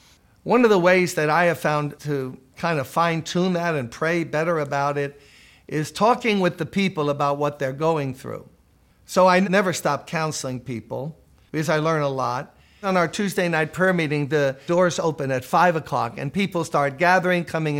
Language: English